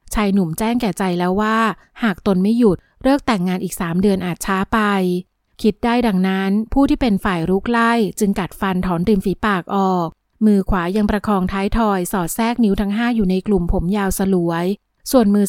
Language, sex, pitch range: Thai, female, 195-235 Hz